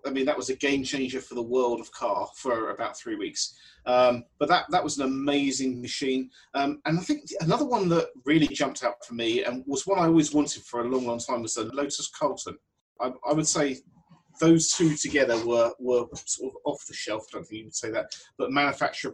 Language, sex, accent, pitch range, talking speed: English, male, British, 120-150 Hz, 230 wpm